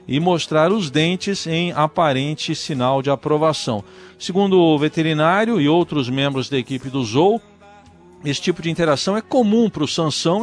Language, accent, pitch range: Portuguese, Brazilian, 135-180 Hz